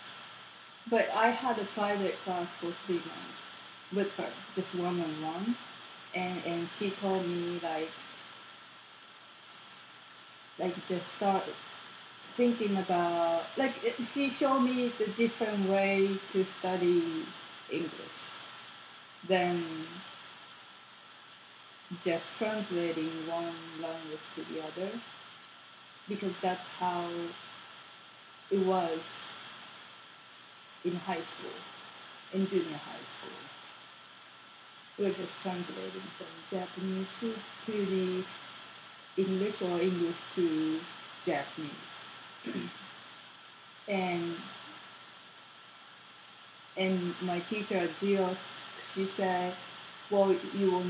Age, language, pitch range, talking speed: 30-49, English, 170-200 Hz, 95 wpm